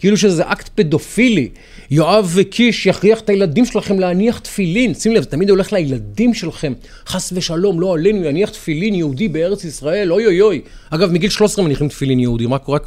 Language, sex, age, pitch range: Hebrew, male, 40-59, 130-190 Hz